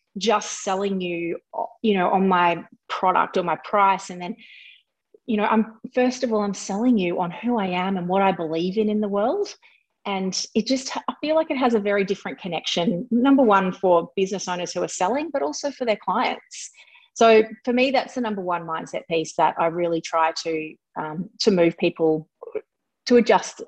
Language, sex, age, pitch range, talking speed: English, female, 30-49, 180-245 Hz, 200 wpm